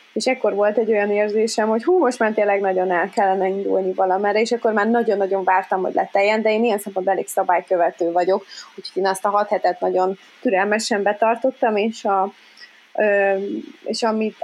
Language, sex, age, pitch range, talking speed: Hungarian, female, 20-39, 200-220 Hz, 185 wpm